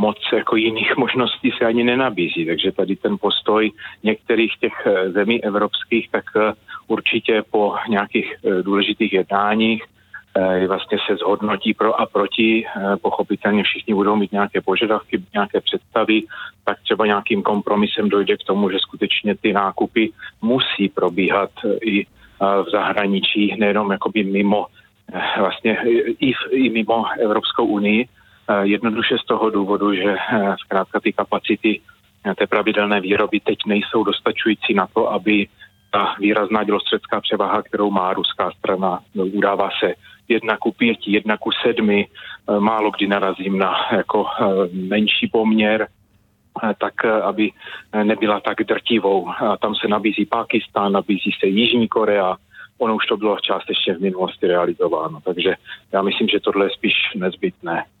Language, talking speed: Czech, 130 wpm